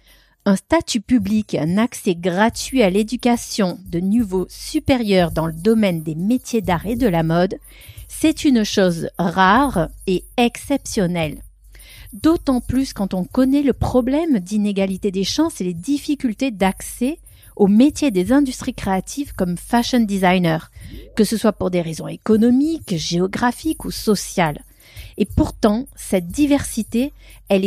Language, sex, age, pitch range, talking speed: French, female, 40-59, 185-255 Hz, 140 wpm